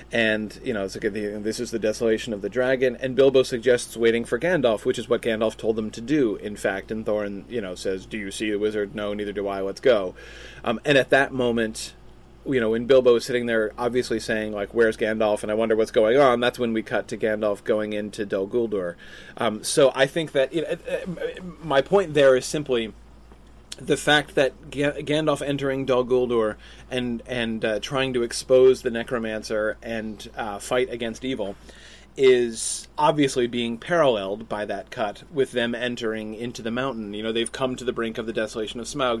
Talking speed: 200 wpm